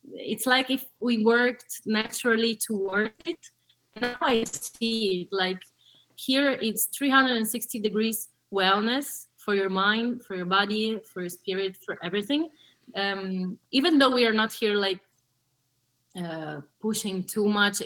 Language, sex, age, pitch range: English, female, 20-39, 180-225 Hz